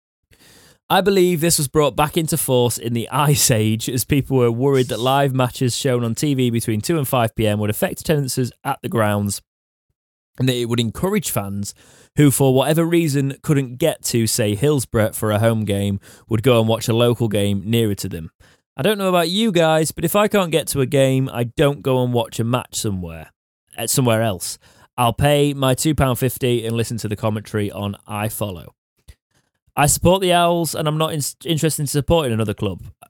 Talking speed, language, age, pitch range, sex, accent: 200 wpm, English, 20-39, 110-140 Hz, male, British